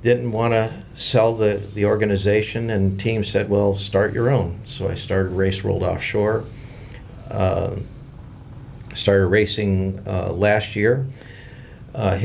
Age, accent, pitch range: 50-69, American, 95-115 Hz